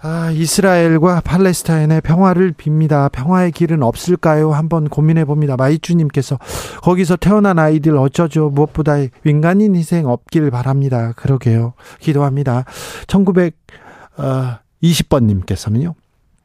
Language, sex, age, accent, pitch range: Korean, male, 40-59, native, 130-170 Hz